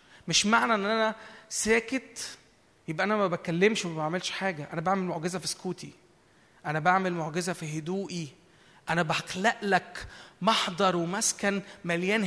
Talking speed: 135 wpm